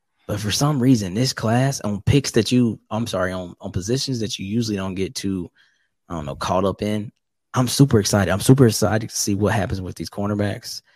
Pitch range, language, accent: 95-120 Hz, English, American